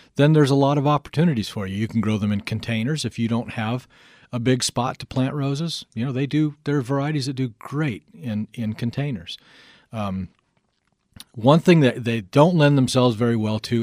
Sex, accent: male, American